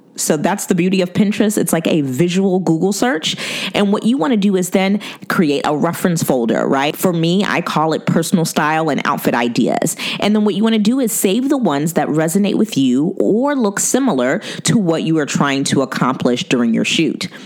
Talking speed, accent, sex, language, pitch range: 215 wpm, American, female, English, 150-215 Hz